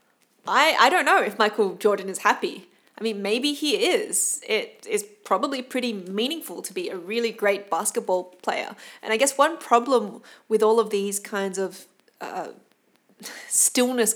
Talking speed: 165 wpm